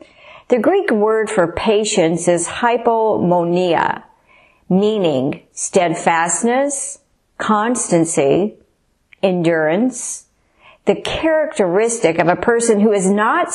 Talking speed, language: 85 wpm, English